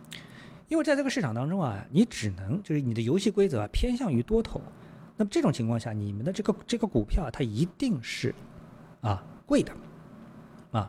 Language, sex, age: Chinese, male, 50-69